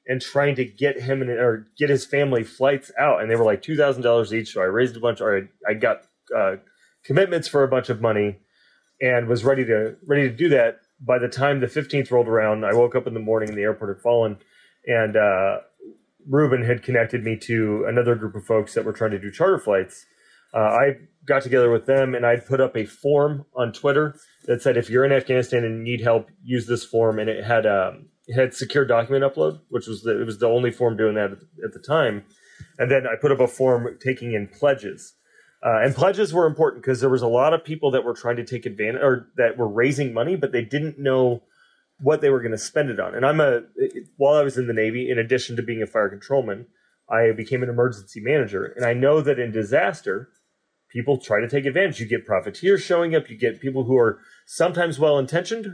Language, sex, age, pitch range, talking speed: English, male, 30-49, 115-140 Hz, 230 wpm